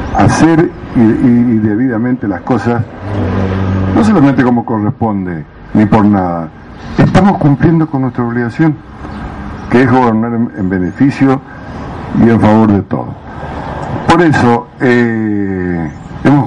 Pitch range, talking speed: 100-130 Hz, 120 wpm